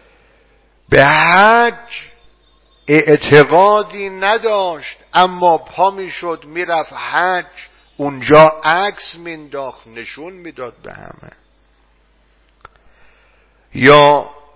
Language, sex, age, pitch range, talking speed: Persian, male, 50-69, 145-190 Hz, 70 wpm